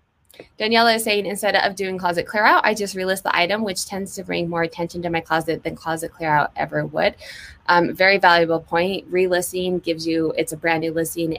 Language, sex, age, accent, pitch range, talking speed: English, female, 20-39, American, 150-190 Hz, 215 wpm